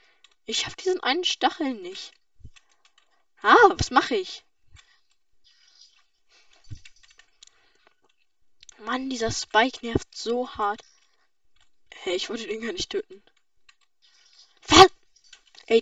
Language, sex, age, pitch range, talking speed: German, female, 10-29, 370-380 Hz, 90 wpm